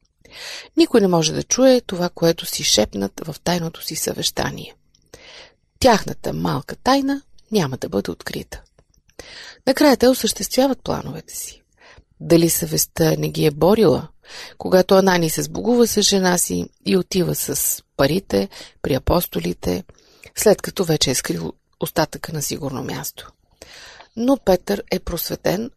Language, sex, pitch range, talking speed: Bulgarian, female, 155-225 Hz, 130 wpm